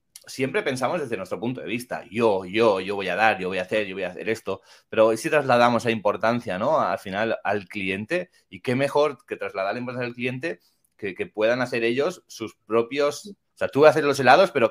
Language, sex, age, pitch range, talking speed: Spanish, male, 30-49, 110-145 Hz, 235 wpm